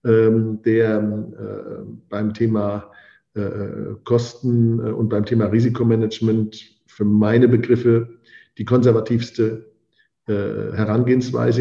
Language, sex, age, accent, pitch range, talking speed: German, male, 50-69, German, 110-120 Hz, 85 wpm